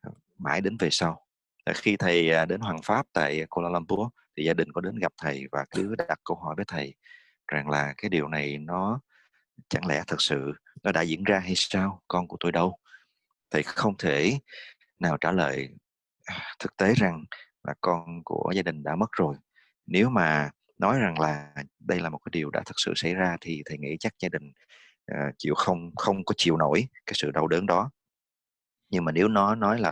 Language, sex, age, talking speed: English, male, 30-49, 205 wpm